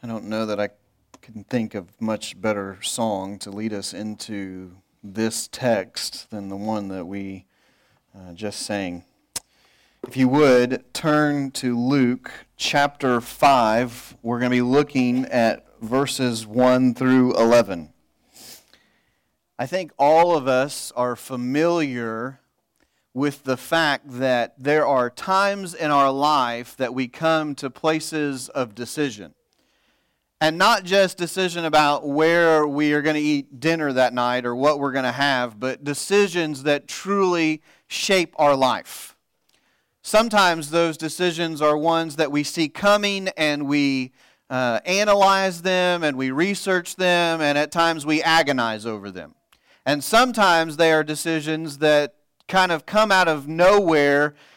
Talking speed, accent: 145 wpm, American